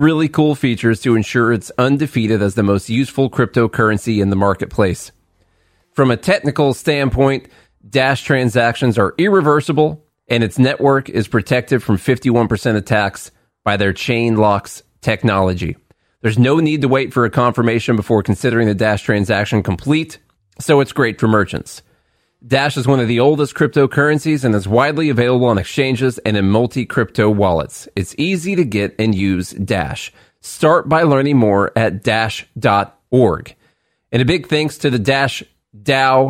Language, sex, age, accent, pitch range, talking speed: English, male, 30-49, American, 105-135 Hz, 155 wpm